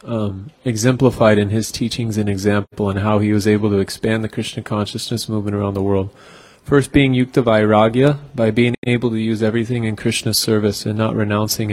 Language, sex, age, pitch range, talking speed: English, male, 30-49, 105-120 Hz, 185 wpm